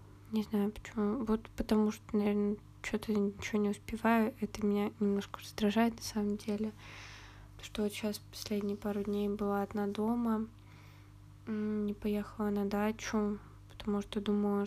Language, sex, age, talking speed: Russian, female, 20-39, 145 wpm